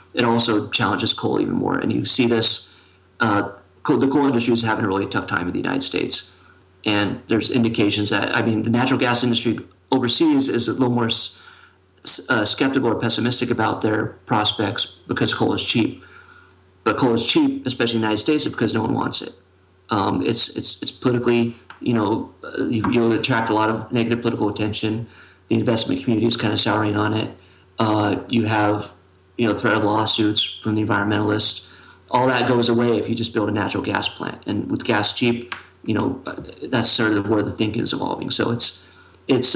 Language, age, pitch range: English, 40-59, 105-120 Hz